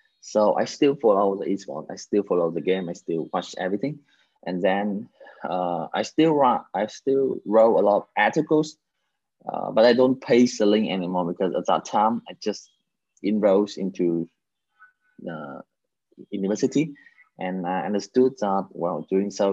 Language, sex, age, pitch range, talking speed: Vietnamese, male, 20-39, 95-120 Hz, 165 wpm